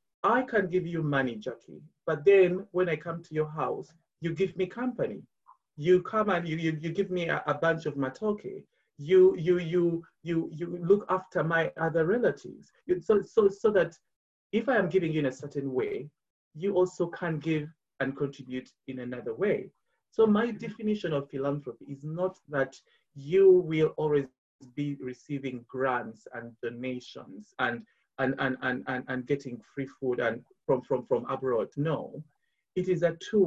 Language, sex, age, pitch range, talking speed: English, male, 30-49, 135-185 Hz, 175 wpm